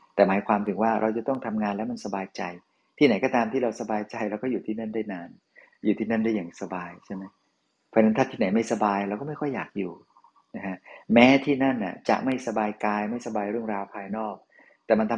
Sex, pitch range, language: male, 105-115 Hz, Thai